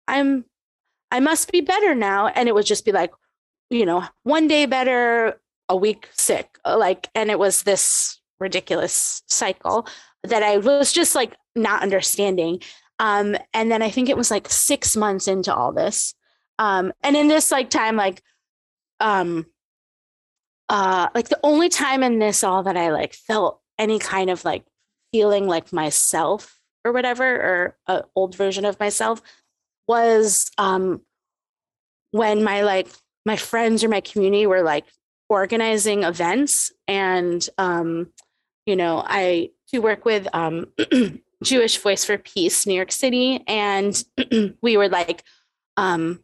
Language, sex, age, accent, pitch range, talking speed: English, female, 20-39, American, 190-235 Hz, 150 wpm